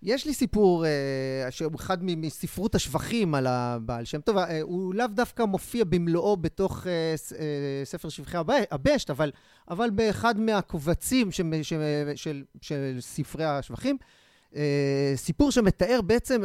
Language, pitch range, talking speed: Hebrew, 145-210 Hz, 115 wpm